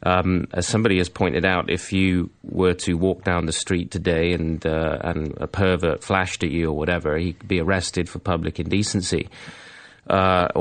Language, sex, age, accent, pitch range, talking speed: English, male, 30-49, British, 85-100 Hz, 185 wpm